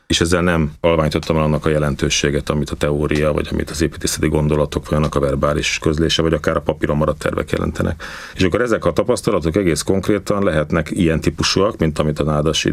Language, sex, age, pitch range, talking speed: Hungarian, male, 40-59, 75-85 Hz, 200 wpm